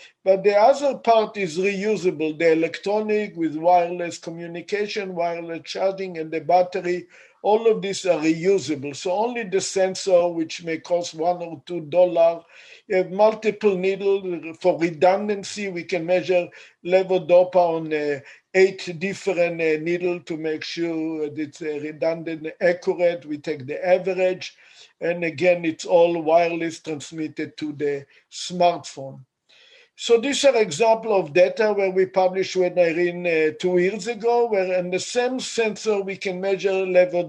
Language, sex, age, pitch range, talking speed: English, male, 50-69, 170-195 Hz, 145 wpm